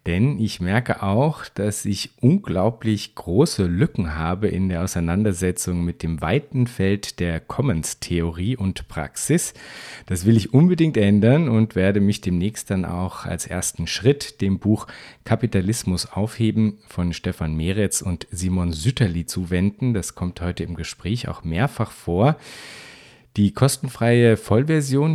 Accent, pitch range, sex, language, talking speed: German, 90-125 Hz, male, German, 135 wpm